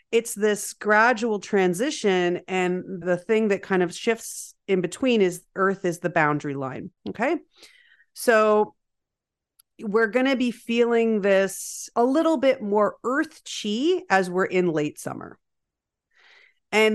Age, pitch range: 40-59, 165-230 Hz